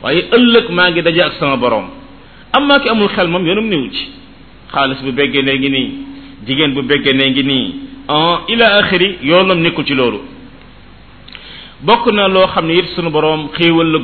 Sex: male